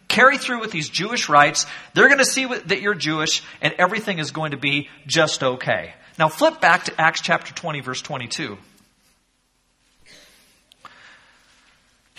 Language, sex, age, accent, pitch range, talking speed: English, male, 40-59, American, 165-260 Hz, 150 wpm